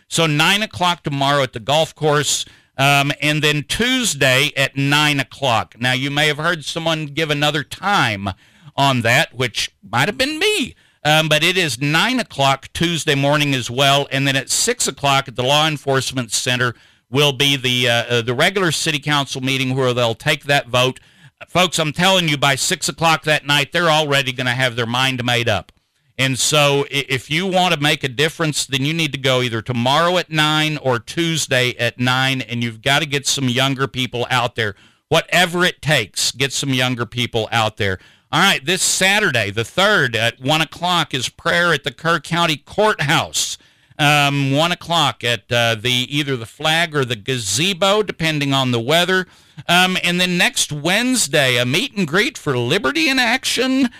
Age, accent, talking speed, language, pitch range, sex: 50-69, American, 185 wpm, English, 130-165 Hz, male